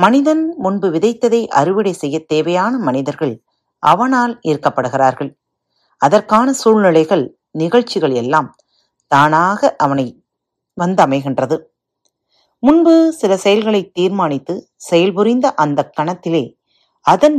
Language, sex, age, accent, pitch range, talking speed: Tamil, female, 40-59, native, 145-230 Hz, 85 wpm